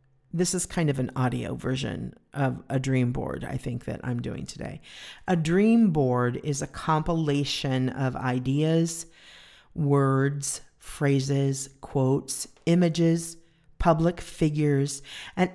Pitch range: 135-160 Hz